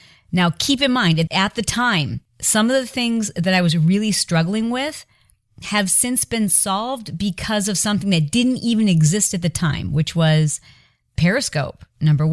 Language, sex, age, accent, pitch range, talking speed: English, female, 40-59, American, 150-190 Hz, 175 wpm